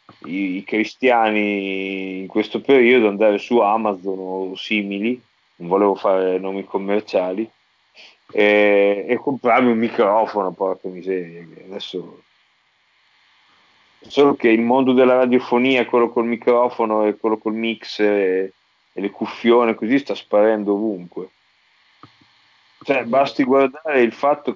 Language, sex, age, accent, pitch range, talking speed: Italian, male, 30-49, native, 100-120 Hz, 120 wpm